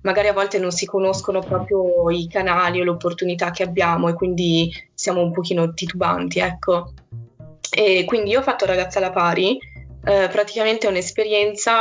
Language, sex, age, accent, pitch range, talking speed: Italian, female, 20-39, native, 175-195 Hz, 170 wpm